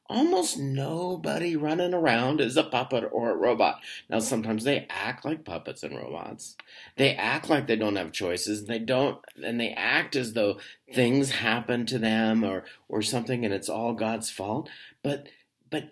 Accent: American